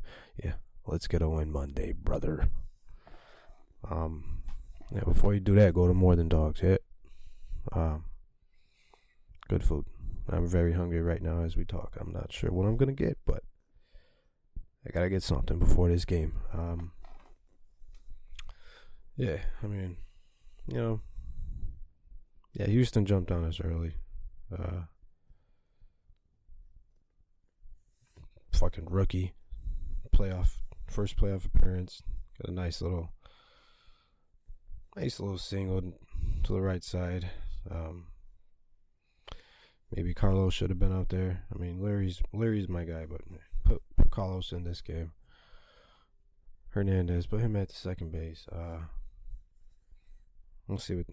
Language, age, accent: English, 20-39, American